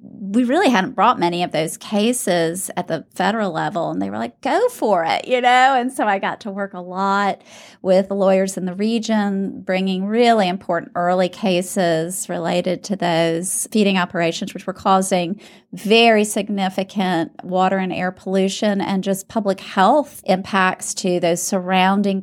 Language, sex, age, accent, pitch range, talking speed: English, female, 30-49, American, 180-215 Hz, 165 wpm